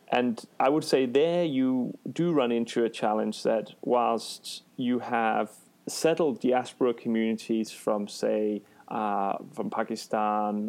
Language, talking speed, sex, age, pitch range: English, 130 wpm, male, 30-49, 105-120 Hz